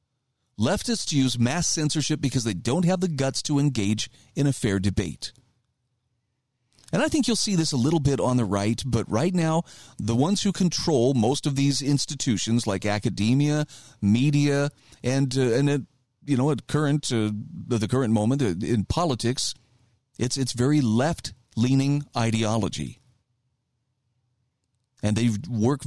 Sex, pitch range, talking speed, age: male, 115-145 Hz, 150 wpm, 40-59